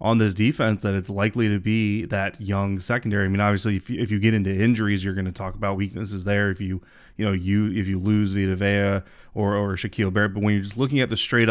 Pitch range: 100-115 Hz